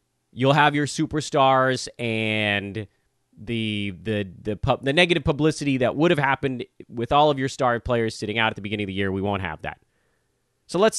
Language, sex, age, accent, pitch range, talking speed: English, male, 30-49, American, 110-150 Hz, 195 wpm